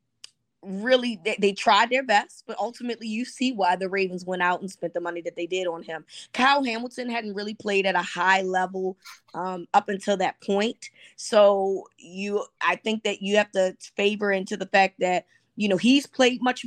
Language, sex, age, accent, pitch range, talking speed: English, female, 20-39, American, 175-220 Hz, 200 wpm